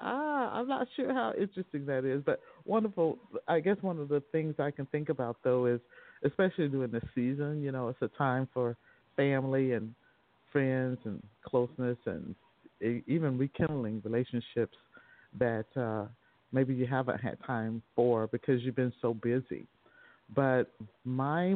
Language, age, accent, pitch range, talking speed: English, 50-69, American, 120-140 Hz, 155 wpm